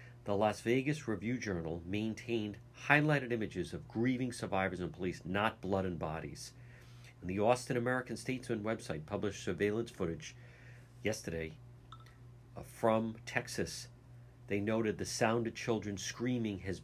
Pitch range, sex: 100-120 Hz, male